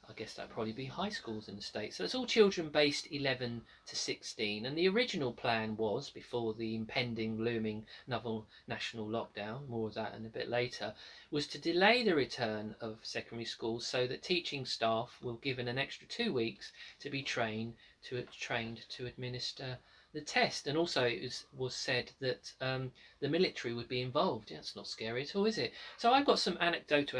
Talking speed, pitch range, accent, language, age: 200 wpm, 120-145 Hz, British, English, 40-59